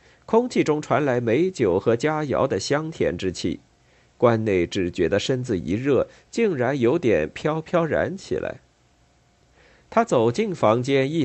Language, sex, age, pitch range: Chinese, male, 50-69, 105-160 Hz